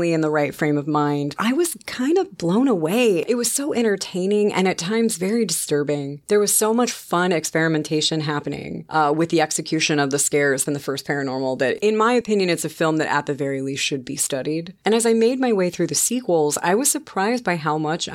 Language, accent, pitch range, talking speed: English, American, 145-195 Hz, 230 wpm